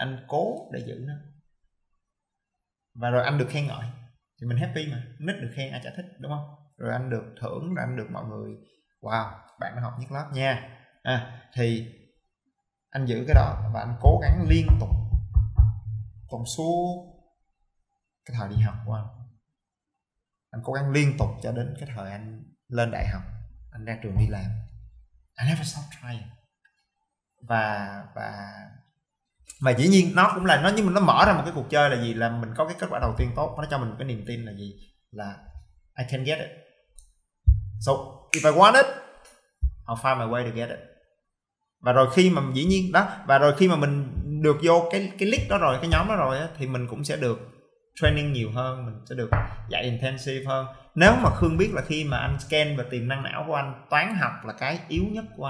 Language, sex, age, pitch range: Vietnamese, male, 20-39, 115-150 Hz